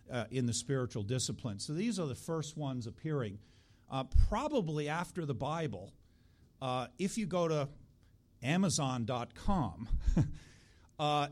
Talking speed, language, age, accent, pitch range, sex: 125 wpm, English, 50-69, American, 115-150 Hz, male